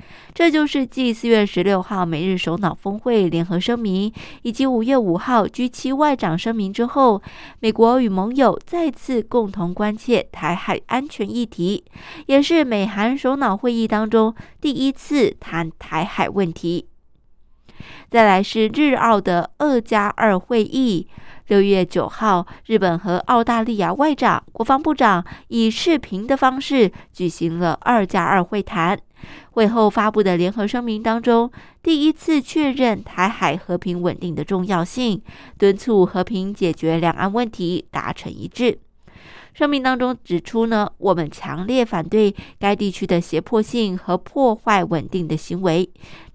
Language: Chinese